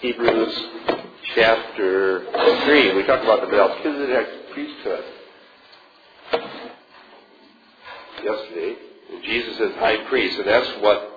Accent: American